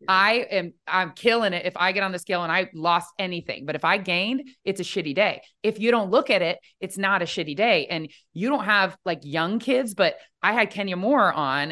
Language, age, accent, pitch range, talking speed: English, 20-39, American, 170-240 Hz, 240 wpm